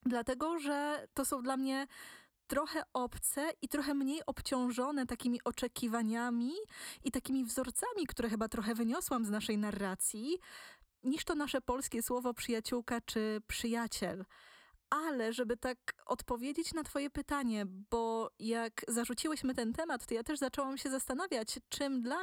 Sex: female